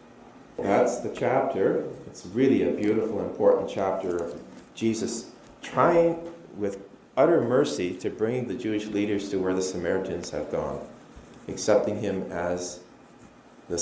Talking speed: 130 wpm